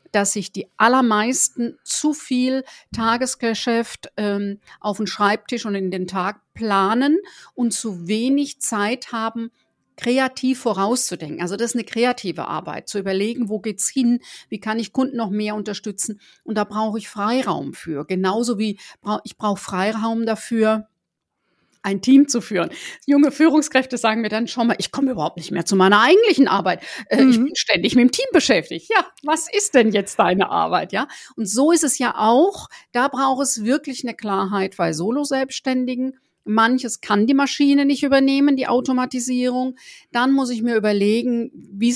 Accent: German